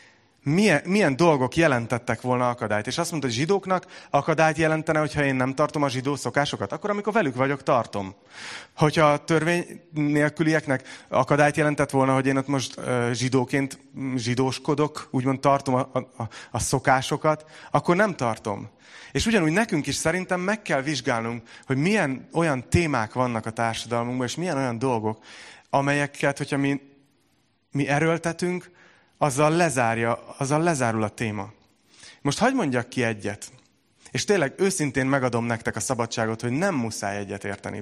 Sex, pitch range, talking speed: male, 120-150 Hz, 150 wpm